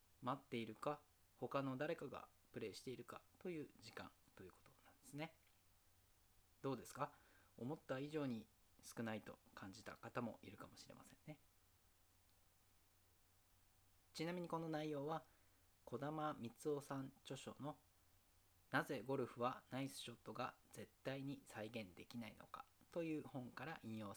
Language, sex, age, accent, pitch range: Japanese, male, 40-59, native, 95-135 Hz